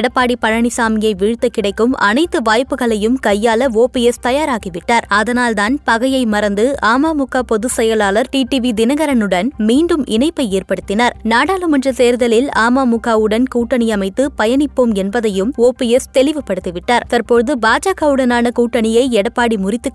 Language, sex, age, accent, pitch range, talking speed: Tamil, female, 20-39, native, 220-270 Hz, 100 wpm